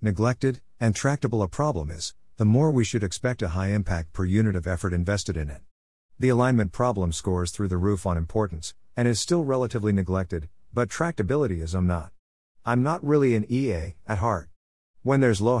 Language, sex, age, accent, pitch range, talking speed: English, male, 50-69, American, 90-120 Hz, 190 wpm